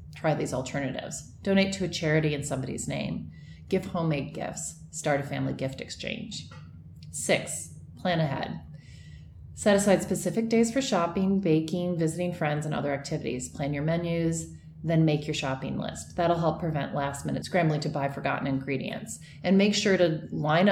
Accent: American